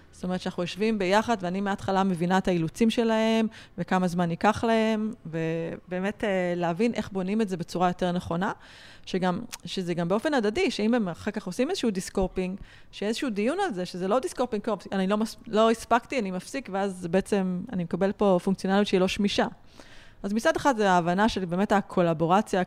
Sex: female